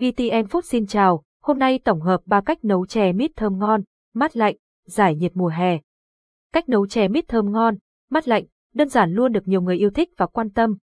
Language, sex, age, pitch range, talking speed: Vietnamese, female, 20-39, 185-240 Hz, 220 wpm